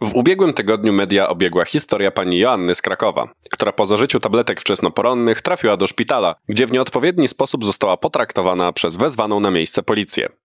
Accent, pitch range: native, 95-125 Hz